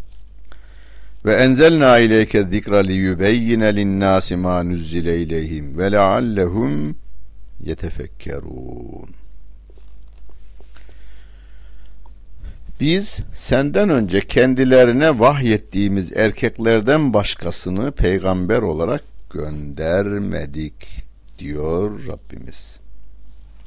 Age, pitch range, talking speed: 60-79, 75-100 Hz, 60 wpm